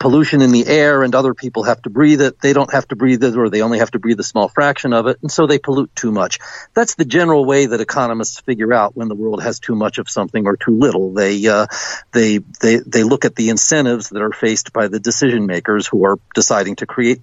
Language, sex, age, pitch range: Chinese, male, 50-69, 120-150 Hz